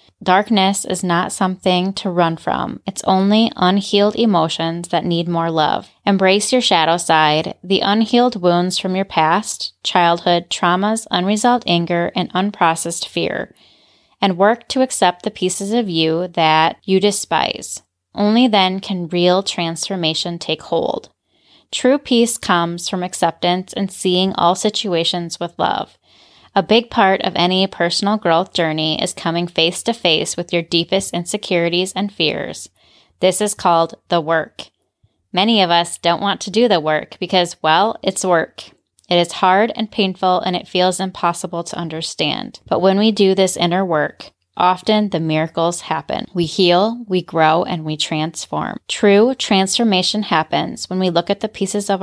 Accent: American